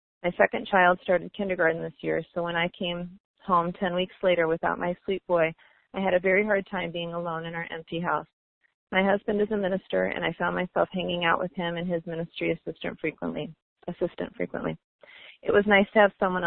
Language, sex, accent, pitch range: English, female, American, 165-190 Hz